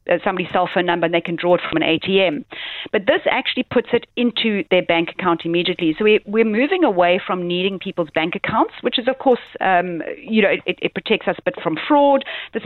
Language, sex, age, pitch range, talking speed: English, female, 40-59, 165-200 Hz, 230 wpm